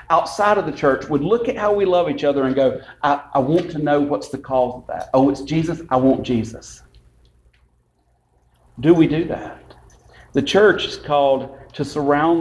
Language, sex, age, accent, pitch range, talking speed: English, male, 40-59, American, 130-170 Hz, 195 wpm